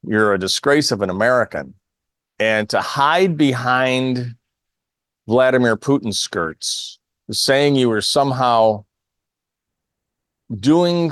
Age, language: 40-59, English